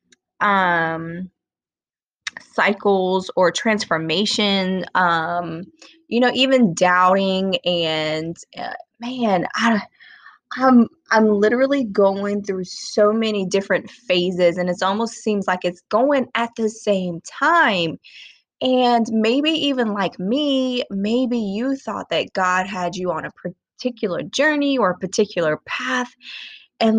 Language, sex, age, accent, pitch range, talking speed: English, female, 20-39, American, 180-245 Hz, 120 wpm